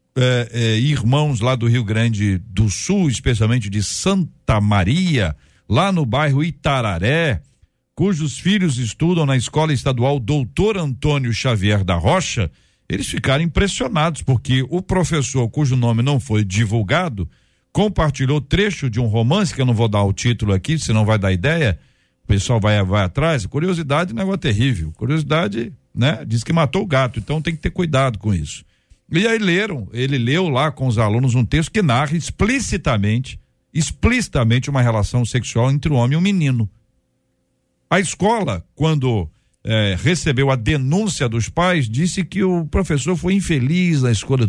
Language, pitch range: Portuguese, 115-165 Hz